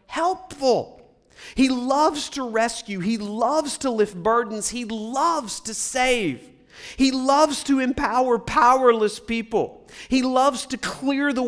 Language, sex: English, male